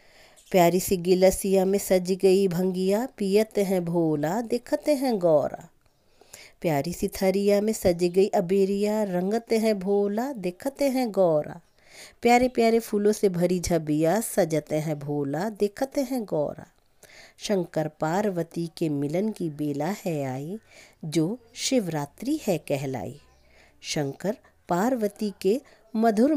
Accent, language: native, Hindi